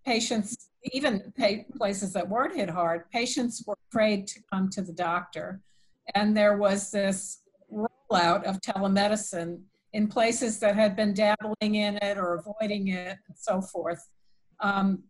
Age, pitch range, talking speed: 50-69, 185-215 Hz, 145 wpm